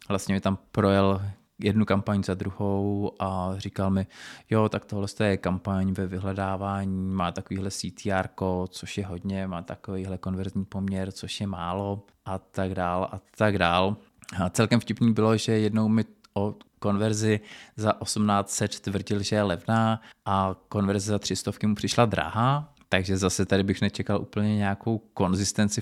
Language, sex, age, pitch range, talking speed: Czech, male, 20-39, 95-105 Hz, 155 wpm